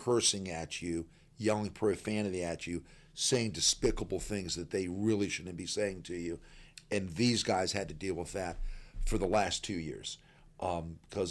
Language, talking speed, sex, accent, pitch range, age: English, 170 wpm, male, American, 90-110 Hz, 50-69